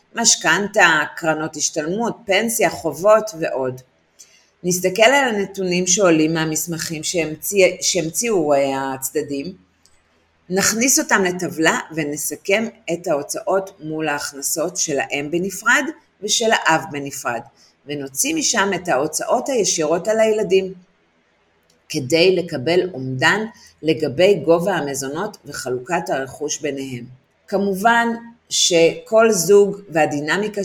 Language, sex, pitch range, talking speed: Hebrew, female, 145-195 Hz, 95 wpm